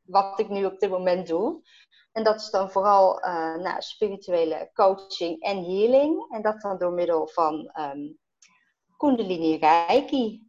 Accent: Dutch